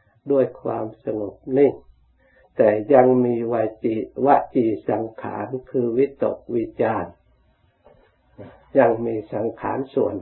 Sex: male